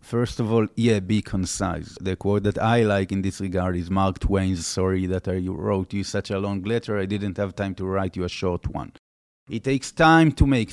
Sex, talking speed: male, 230 wpm